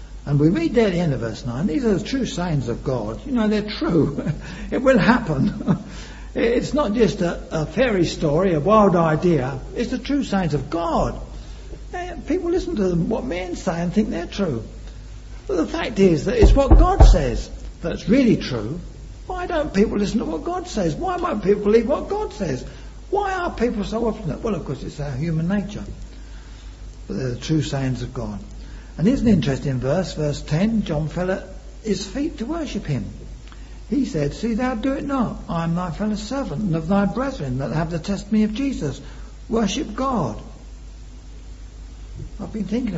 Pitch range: 140-225 Hz